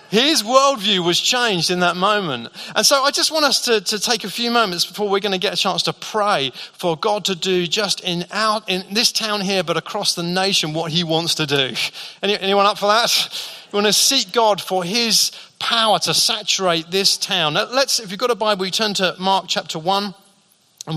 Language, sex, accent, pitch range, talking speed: English, male, British, 165-205 Hz, 225 wpm